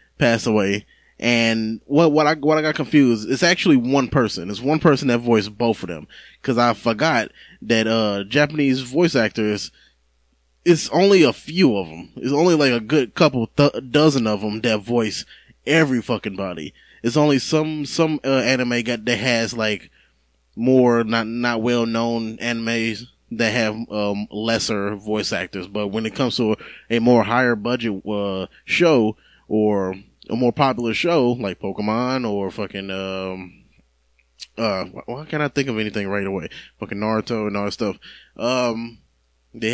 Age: 20-39